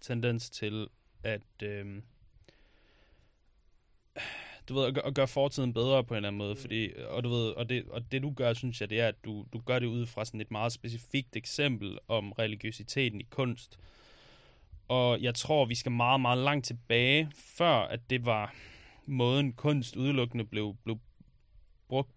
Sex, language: male, Danish